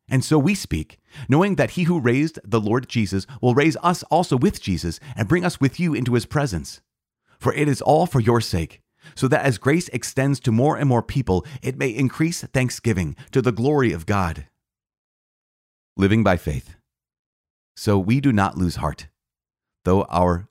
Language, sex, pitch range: English, male, 95-135 Hz